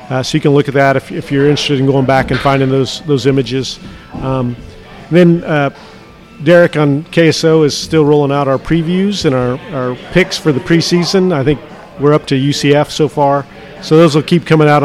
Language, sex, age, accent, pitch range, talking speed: English, male, 40-59, American, 130-155 Hz, 210 wpm